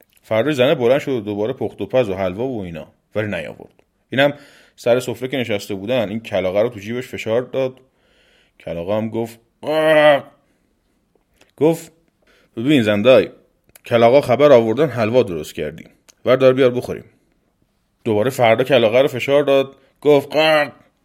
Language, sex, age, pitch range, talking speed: Persian, male, 30-49, 100-135 Hz, 140 wpm